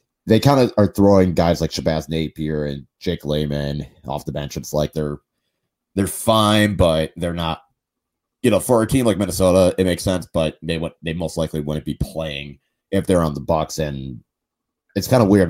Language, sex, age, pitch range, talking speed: English, male, 30-49, 75-90 Hz, 200 wpm